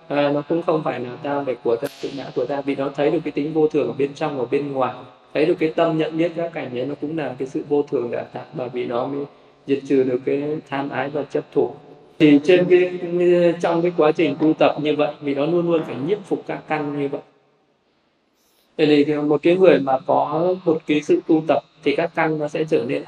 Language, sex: Vietnamese, male